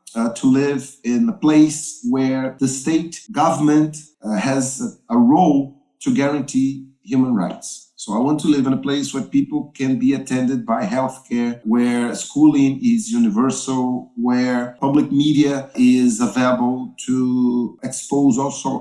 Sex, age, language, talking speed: male, 50-69, English, 145 wpm